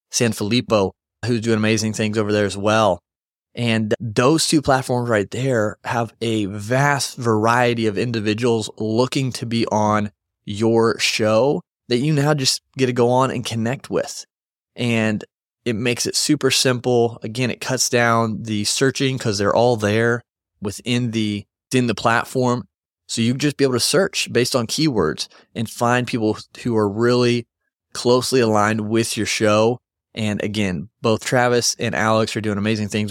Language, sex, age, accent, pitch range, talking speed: English, male, 20-39, American, 105-120 Hz, 165 wpm